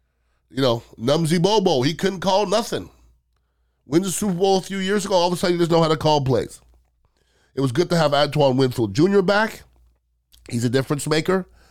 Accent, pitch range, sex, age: American, 110-150 Hz, male, 30-49